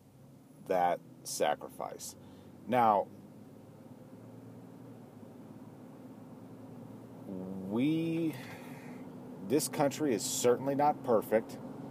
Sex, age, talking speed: male, 40-59, 50 wpm